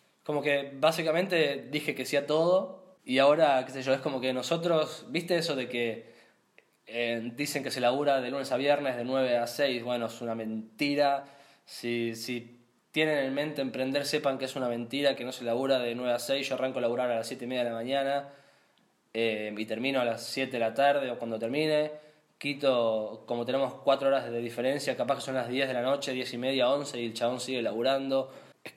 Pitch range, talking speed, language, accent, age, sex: 120-145 Hz, 220 wpm, Spanish, Argentinian, 20-39, male